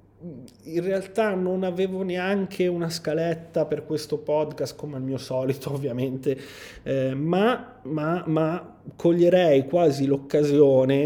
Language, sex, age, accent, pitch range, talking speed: Italian, male, 30-49, native, 125-155 Hz, 120 wpm